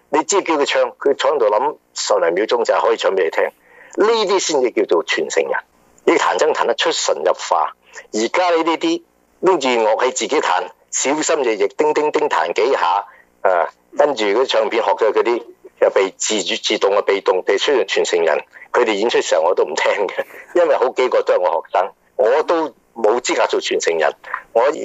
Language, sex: Chinese, male